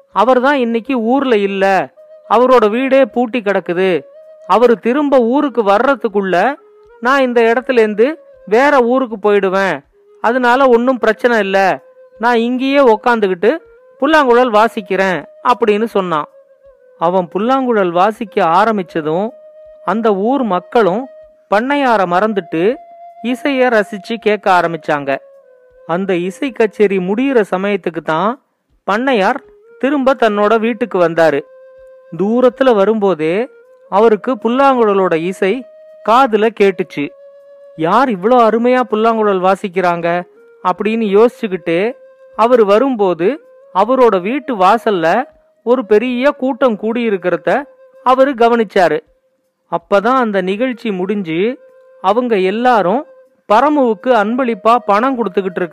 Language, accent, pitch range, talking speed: Tamil, native, 200-265 Hz, 80 wpm